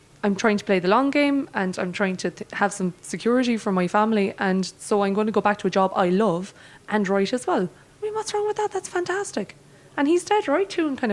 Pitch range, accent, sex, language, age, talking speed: 170-225 Hz, Irish, female, English, 20-39, 260 wpm